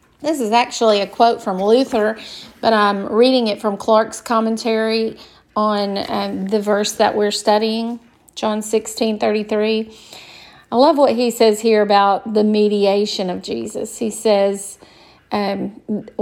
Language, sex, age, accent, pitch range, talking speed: English, female, 40-59, American, 210-255 Hz, 135 wpm